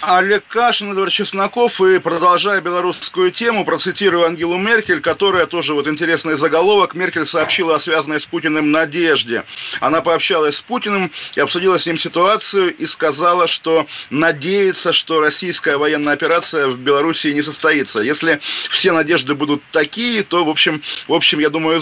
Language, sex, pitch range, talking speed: Russian, male, 145-180 Hz, 155 wpm